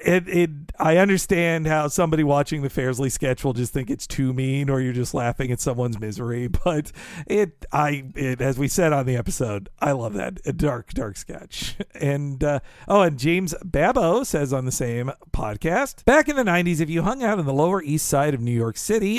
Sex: male